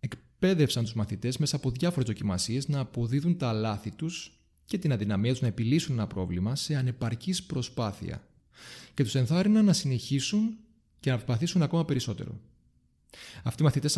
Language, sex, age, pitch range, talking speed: Greek, male, 30-49, 105-150 Hz, 155 wpm